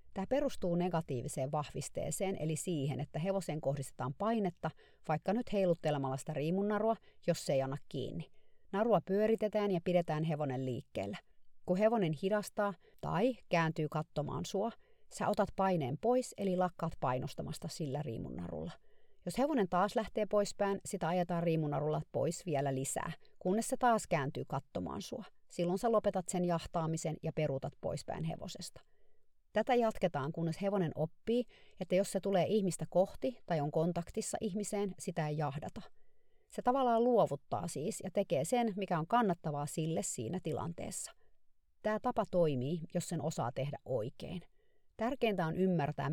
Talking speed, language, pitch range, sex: 145 wpm, Finnish, 155-210 Hz, female